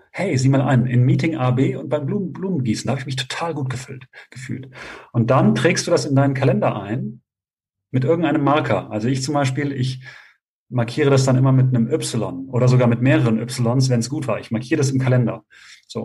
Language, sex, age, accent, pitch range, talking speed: German, male, 40-59, German, 120-140 Hz, 220 wpm